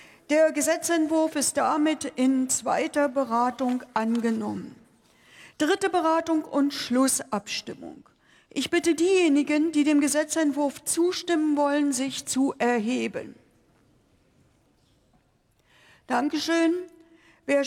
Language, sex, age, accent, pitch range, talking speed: German, female, 60-79, German, 275-330 Hz, 85 wpm